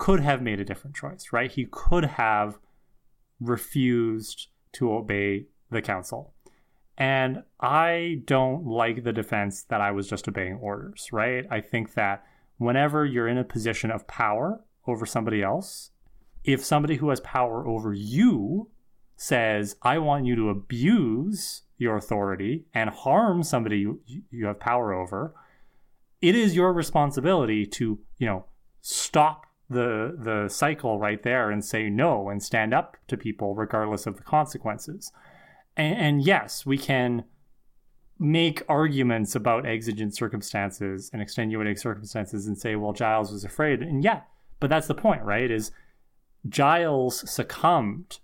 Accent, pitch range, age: American, 105-145 Hz, 30-49